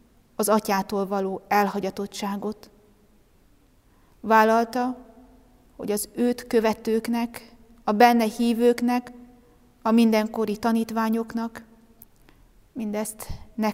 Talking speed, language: 75 wpm, Hungarian